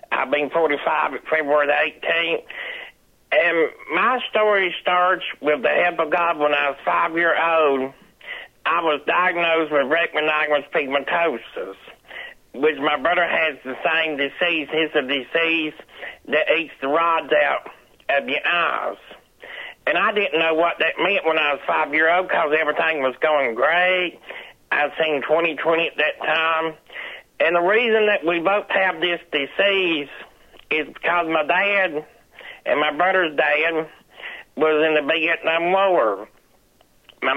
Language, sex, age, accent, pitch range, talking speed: English, male, 60-79, American, 155-185 Hz, 145 wpm